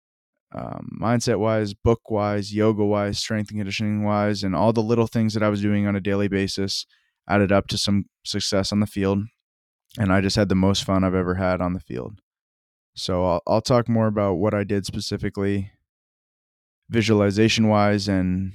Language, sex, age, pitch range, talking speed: English, male, 20-39, 95-105 Hz, 170 wpm